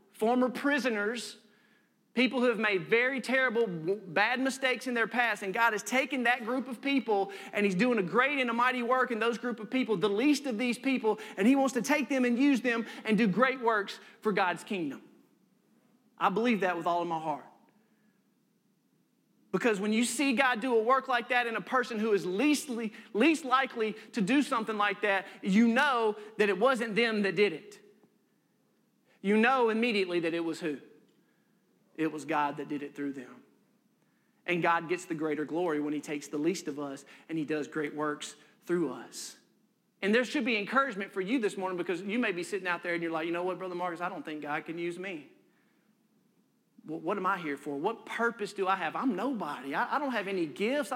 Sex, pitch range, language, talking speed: male, 180-250 Hz, English, 215 wpm